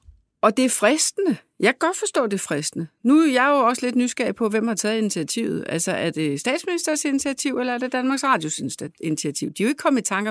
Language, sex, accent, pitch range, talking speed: Danish, female, native, 165-230 Hz, 245 wpm